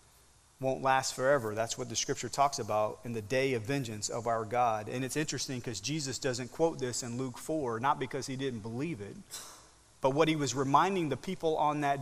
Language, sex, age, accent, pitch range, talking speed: English, male, 30-49, American, 125-160 Hz, 215 wpm